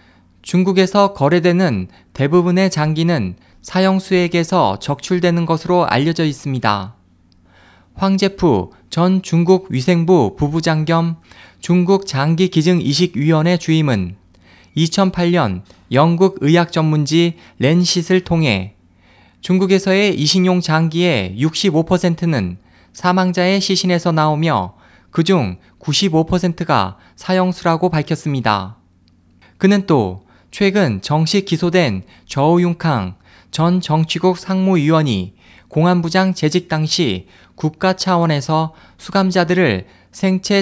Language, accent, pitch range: Korean, native, 110-180 Hz